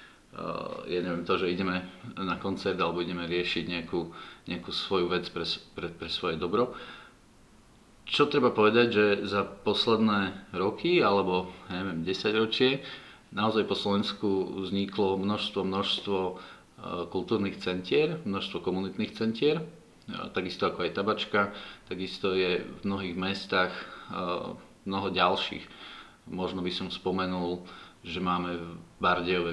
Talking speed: 120 wpm